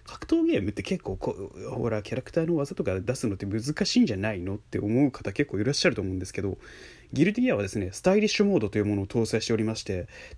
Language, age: Japanese, 20-39